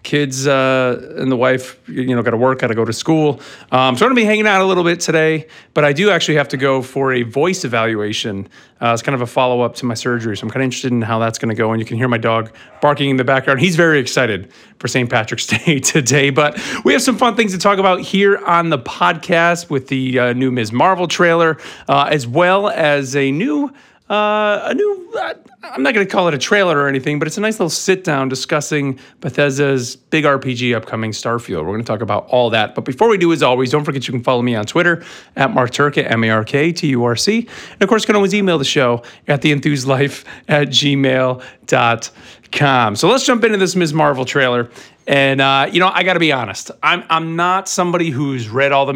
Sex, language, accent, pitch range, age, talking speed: male, English, American, 120-165 Hz, 40-59, 235 wpm